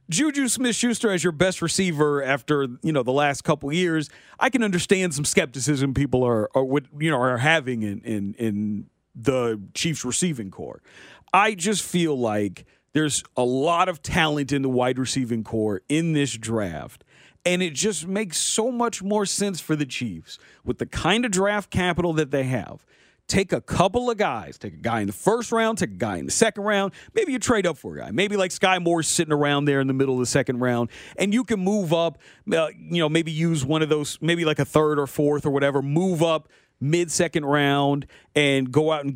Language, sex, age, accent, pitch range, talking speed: English, male, 40-59, American, 135-180 Hz, 210 wpm